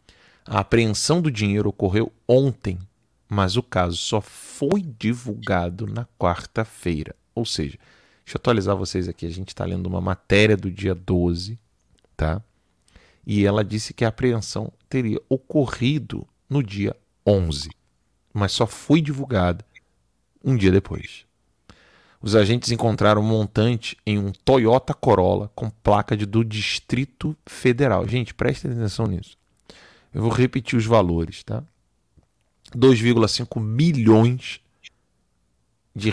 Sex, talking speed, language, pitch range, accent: male, 130 wpm, Portuguese, 95-120 Hz, Brazilian